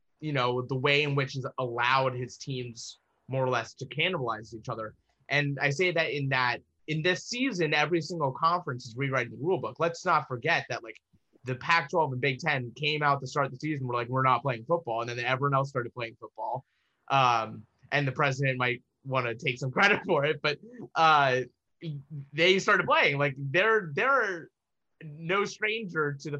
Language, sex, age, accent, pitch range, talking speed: English, male, 20-39, American, 130-165 Hz, 200 wpm